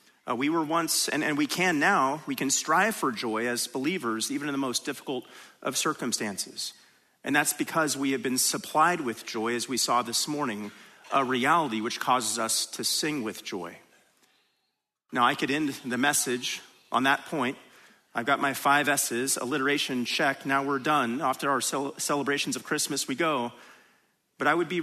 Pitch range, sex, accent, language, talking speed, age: 120-150 Hz, male, American, English, 185 wpm, 40-59